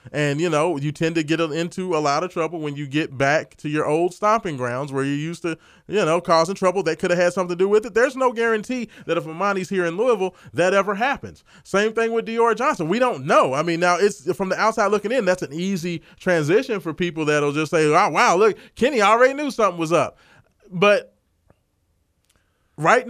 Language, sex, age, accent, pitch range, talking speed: English, male, 30-49, American, 145-200 Hz, 230 wpm